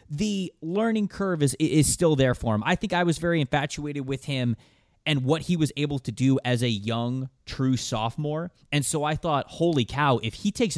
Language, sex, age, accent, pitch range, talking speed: English, male, 20-39, American, 115-150 Hz, 210 wpm